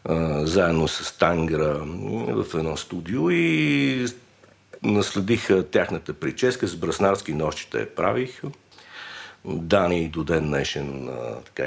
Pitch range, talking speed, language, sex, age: 75-125 Hz, 105 wpm, Bulgarian, male, 50-69